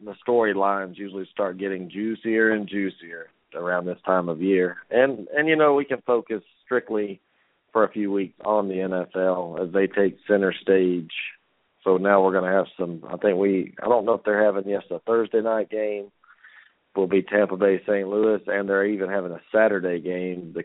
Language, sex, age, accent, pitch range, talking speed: English, male, 40-59, American, 90-105 Hz, 195 wpm